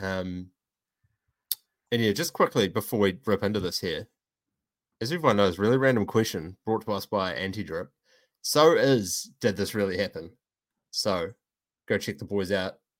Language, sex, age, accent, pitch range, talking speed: English, male, 20-39, Australian, 95-115 Hz, 160 wpm